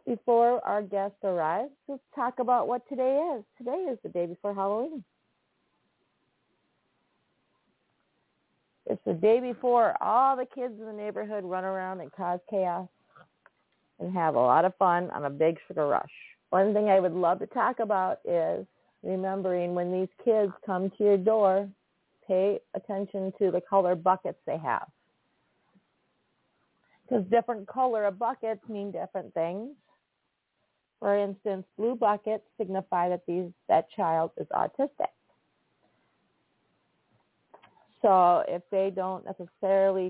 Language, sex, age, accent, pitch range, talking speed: English, female, 40-59, American, 180-225 Hz, 135 wpm